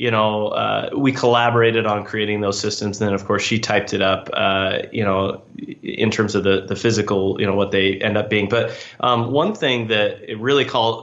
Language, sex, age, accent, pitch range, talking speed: English, male, 20-39, American, 105-120 Hz, 225 wpm